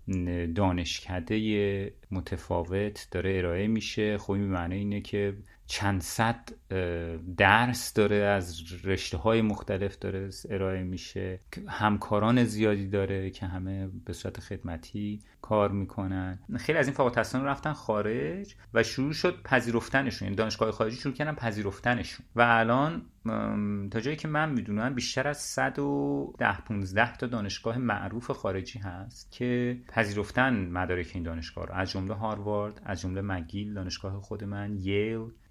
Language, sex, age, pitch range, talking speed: Persian, male, 30-49, 95-115 Hz, 135 wpm